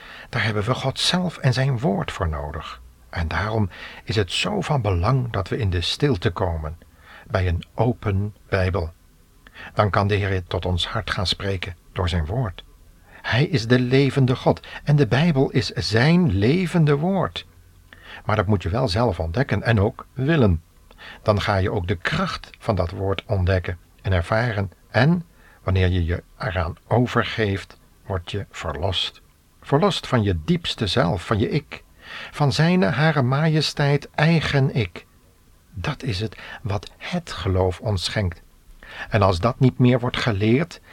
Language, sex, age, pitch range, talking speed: Dutch, male, 60-79, 90-130 Hz, 165 wpm